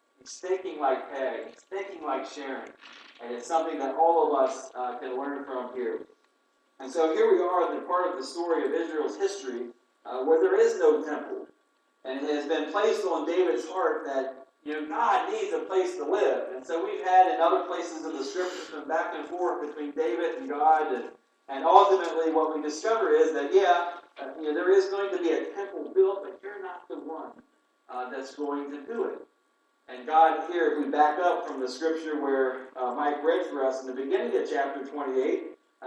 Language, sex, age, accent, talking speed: English, male, 40-59, American, 215 wpm